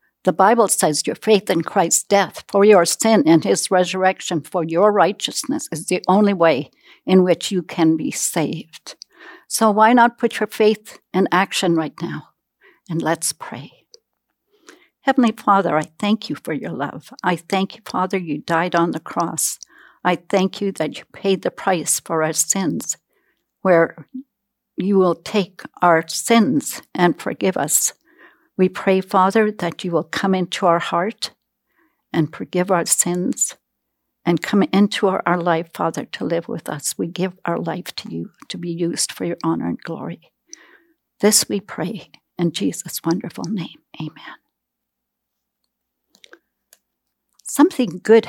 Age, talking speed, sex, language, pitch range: 60-79, 155 wpm, female, English, 170-220 Hz